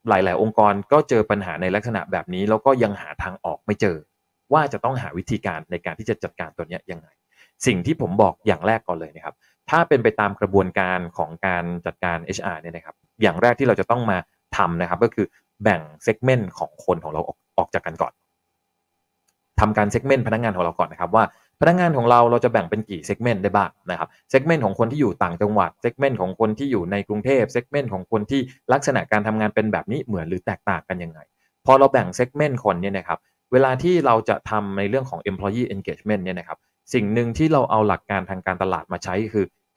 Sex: male